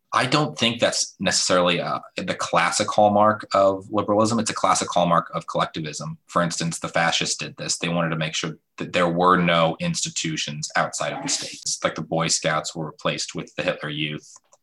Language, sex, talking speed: English, male, 190 wpm